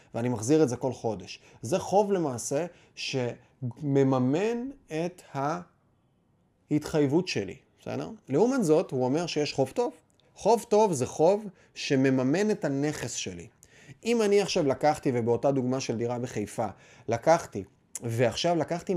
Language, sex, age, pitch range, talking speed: Hebrew, male, 30-49, 125-160 Hz, 130 wpm